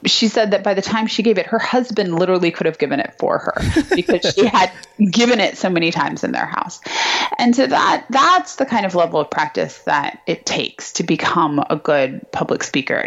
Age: 20-39